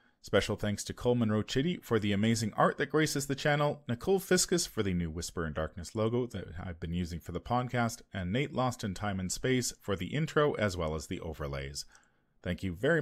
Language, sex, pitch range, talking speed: English, male, 100-145 Hz, 220 wpm